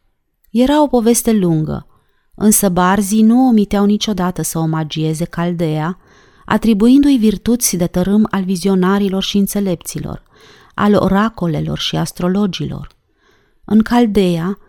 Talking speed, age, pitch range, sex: 105 wpm, 30-49, 175-225 Hz, female